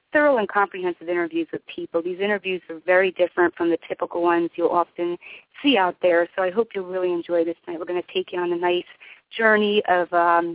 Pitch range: 170-210 Hz